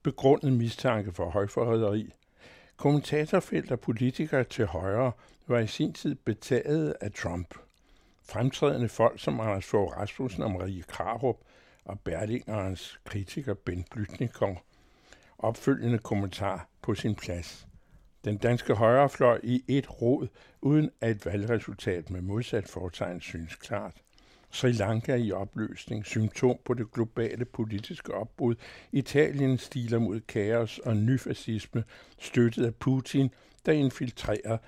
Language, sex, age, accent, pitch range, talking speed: Danish, male, 60-79, American, 100-125 Hz, 125 wpm